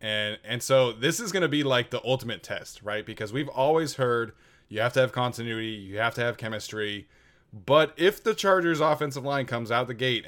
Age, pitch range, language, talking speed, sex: 20-39, 110-135 Hz, English, 215 wpm, male